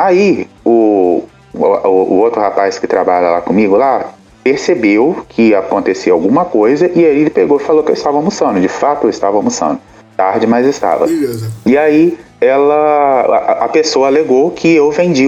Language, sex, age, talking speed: Portuguese, male, 30-49, 175 wpm